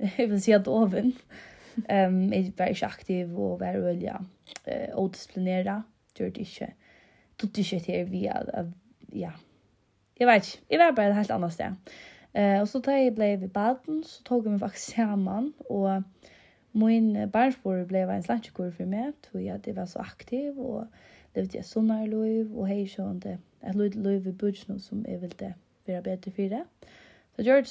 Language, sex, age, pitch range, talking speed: Danish, female, 20-39, 190-235 Hz, 150 wpm